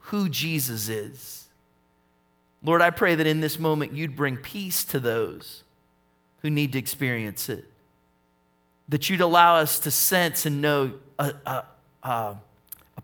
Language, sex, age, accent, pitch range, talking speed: English, male, 40-59, American, 90-150 Hz, 140 wpm